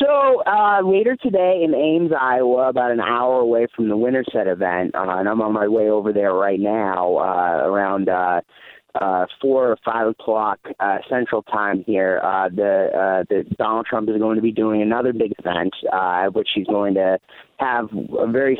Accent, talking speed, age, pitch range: American, 190 wpm, 30-49, 105-125 Hz